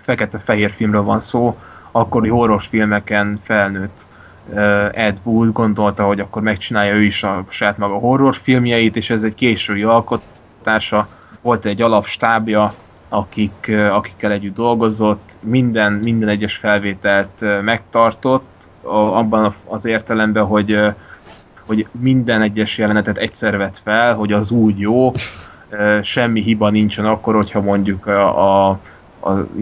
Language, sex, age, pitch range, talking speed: Hungarian, male, 20-39, 100-115 Hz, 125 wpm